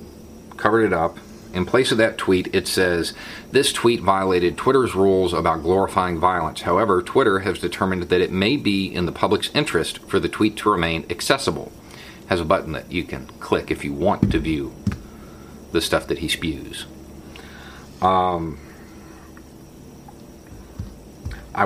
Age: 40-59